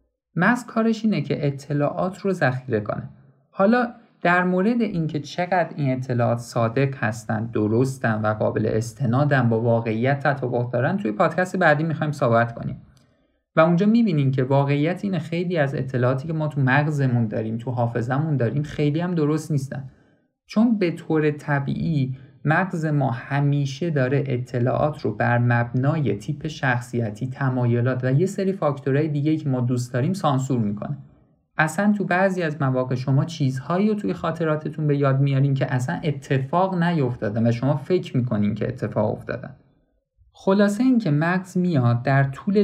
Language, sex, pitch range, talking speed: Persian, male, 125-165 Hz, 155 wpm